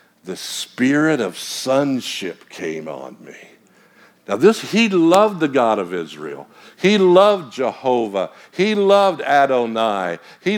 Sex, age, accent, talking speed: male, 60-79, American, 125 wpm